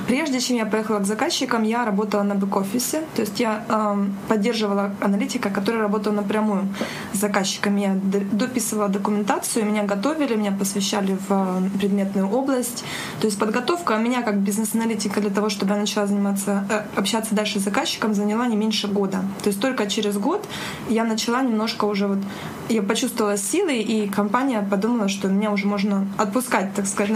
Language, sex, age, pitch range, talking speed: Ukrainian, female, 20-39, 200-225 Hz, 165 wpm